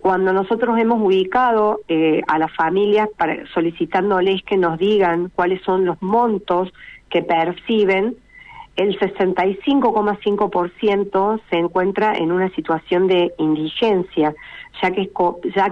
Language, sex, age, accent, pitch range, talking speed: Spanish, female, 40-59, Argentinian, 170-215 Hz, 115 wpm